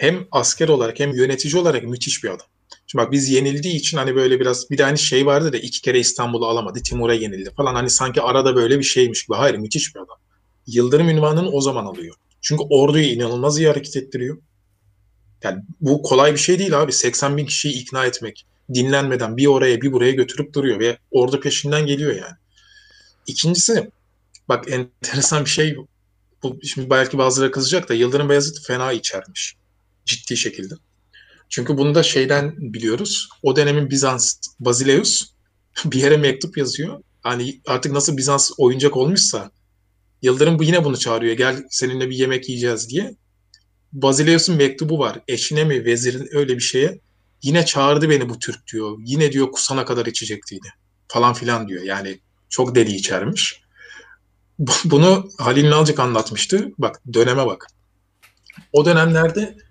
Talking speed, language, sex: 160 wpm, Turkish, male